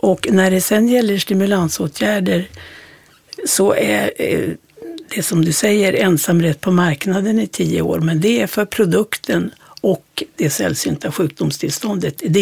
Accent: native